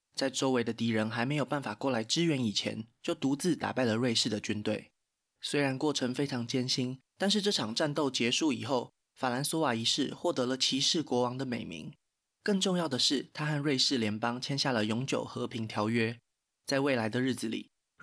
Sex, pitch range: male, 115-145 Hz